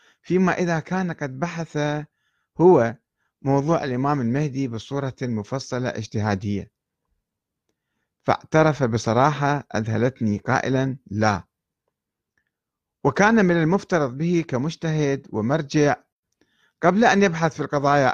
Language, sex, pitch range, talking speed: Arabic, male, 120-160 Hz, 95 wpm